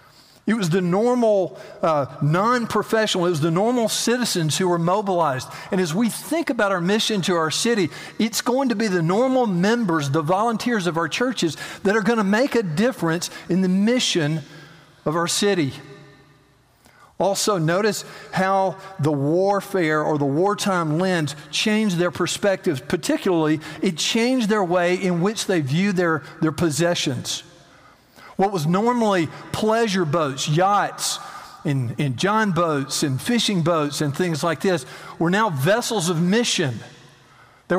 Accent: American